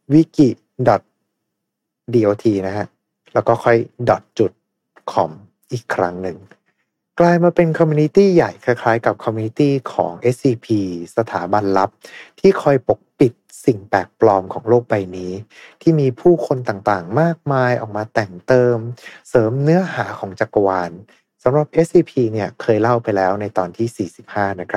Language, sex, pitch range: Thai, male, 100-140 Hz